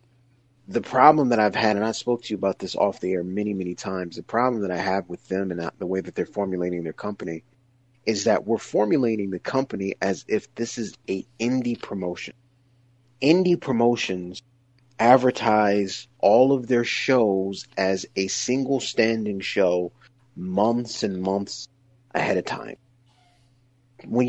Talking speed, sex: 160 wpm, male